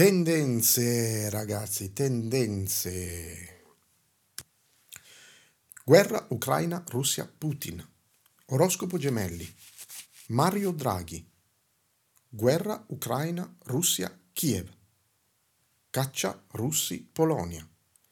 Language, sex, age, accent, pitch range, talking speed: Italian, male, 50-69, native, 95-135 Hz, 60 wpm